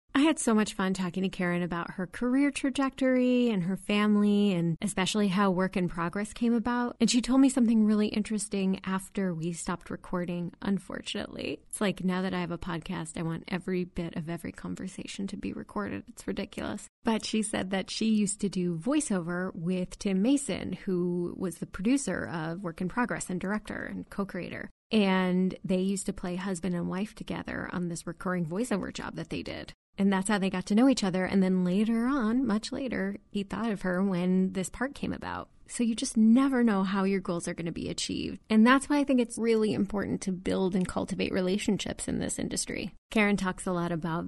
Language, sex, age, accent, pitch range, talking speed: English, female, 30-49, American, 180-220 Hz, 210 wpm